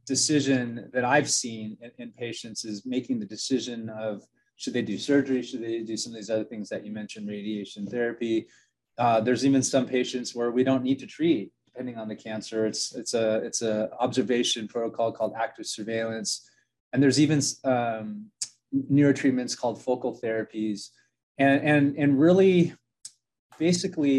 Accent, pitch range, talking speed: American, 110-135 Hz, 165 wpm